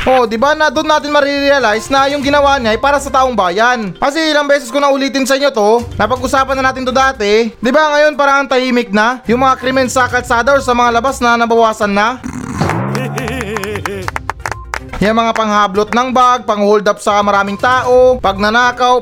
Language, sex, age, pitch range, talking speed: Filipino, male, 20-39, 230-275 Hz, 185 wpm